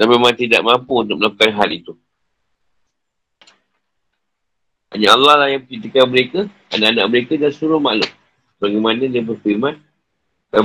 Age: 50-69